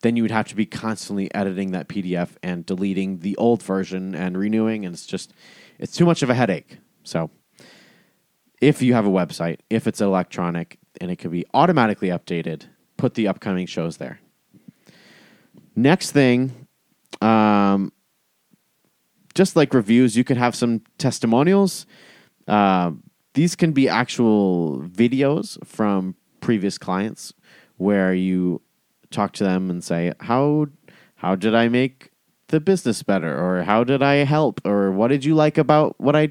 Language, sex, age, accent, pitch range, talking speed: English, male, 30-49, American, 90-130 Hz, 155 wpm